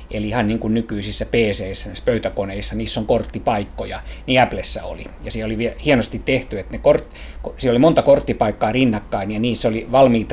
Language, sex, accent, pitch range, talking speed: Finnish, male, native, 100-115 Hz, 180 wpm